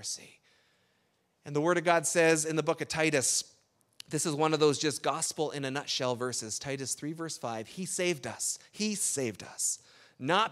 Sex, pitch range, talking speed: male, 120-170 Hz, 190 wpm